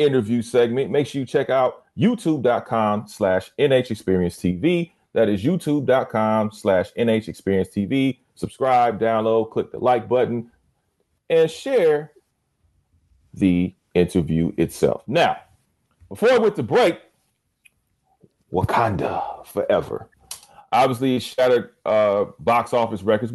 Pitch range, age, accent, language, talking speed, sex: 90-115 Hz, 40-59, American, English, 110 wpm, male